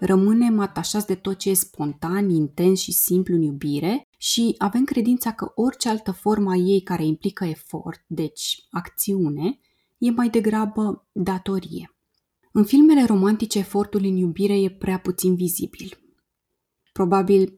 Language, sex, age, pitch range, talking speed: Romanian, female, 20-39, 170-210 Hz, 140 wpm